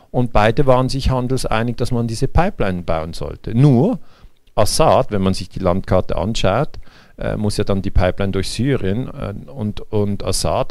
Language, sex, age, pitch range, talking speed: German, male, 50-69, 95-120 Hz, 175 wpm